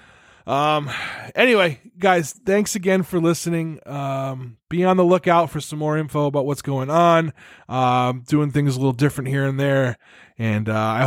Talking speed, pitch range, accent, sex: 180 wpm, 120-165 Hz, American, male